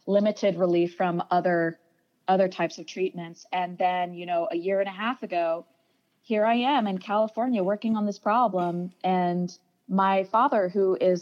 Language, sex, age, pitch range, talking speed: English, female, 20-39, 175-195 Hz, 170 wpm